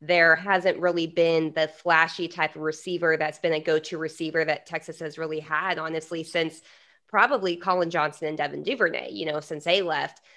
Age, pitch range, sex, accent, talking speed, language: 20-39, 160-195 Hz, female, American, 185 wpm, English